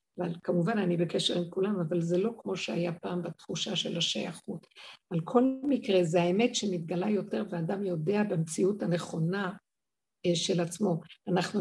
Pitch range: 175-215 Hz